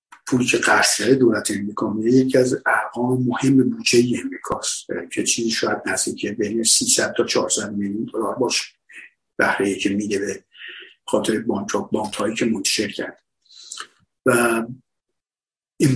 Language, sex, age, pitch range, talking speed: Persian, male, 50-69, 110-130 Hz, 140 wpm